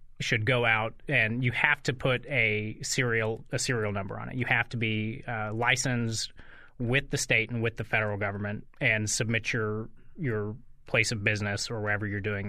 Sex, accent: male, American